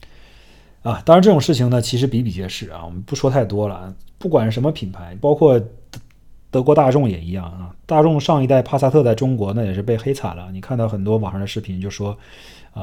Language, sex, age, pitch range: Chinese, male, 30-49, 100-125 Hz